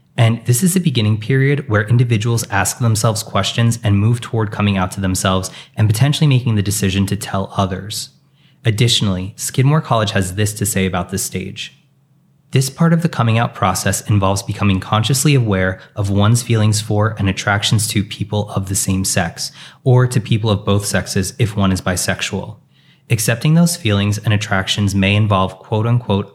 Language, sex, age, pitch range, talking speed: English, male, 20-39, 95-120 Hz, 175 wpm